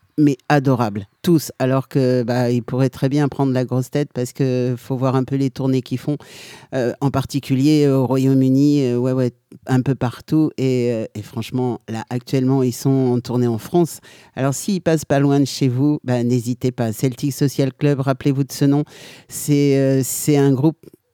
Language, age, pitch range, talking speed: French, 50-69, 125-145 Hz, 195 wpm